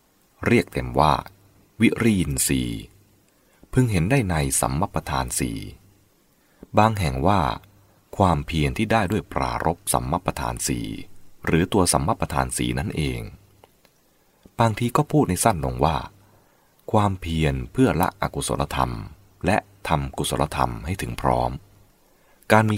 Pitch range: 70-100 Hz